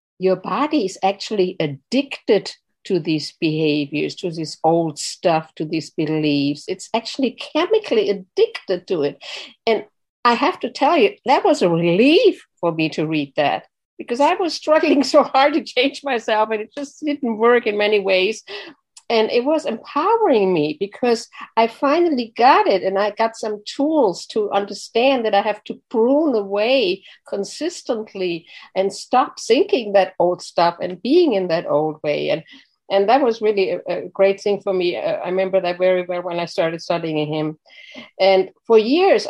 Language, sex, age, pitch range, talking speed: English, female, 60-79, 180-240 Hz, 175 wpm